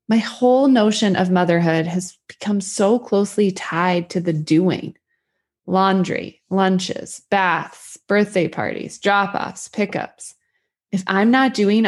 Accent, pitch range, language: American, 175-210 Hz, English